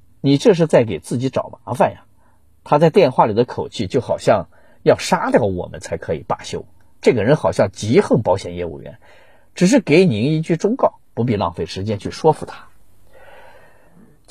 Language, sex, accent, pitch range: Chinese, male, native, 105-170 Hz